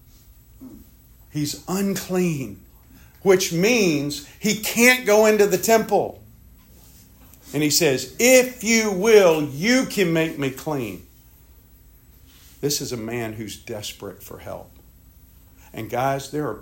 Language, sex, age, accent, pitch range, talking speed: English, male, 50-69, American, 120-185 Hz, 120 wpm